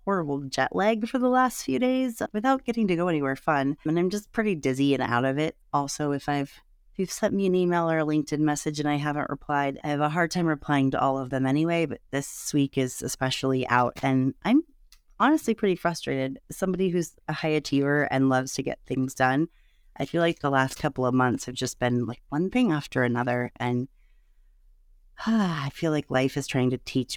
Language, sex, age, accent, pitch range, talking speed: English, female, 30-49, American, 130-165 Hz, 215 wpm